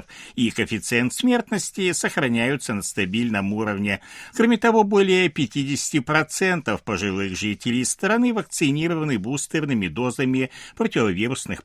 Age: 60-79